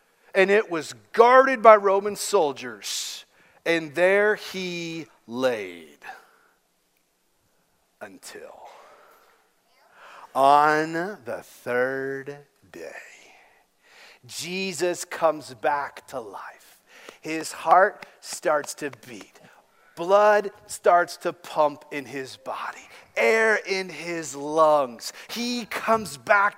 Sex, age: male, 40-59